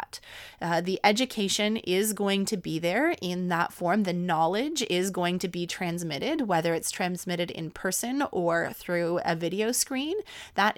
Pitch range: 175-240 Hz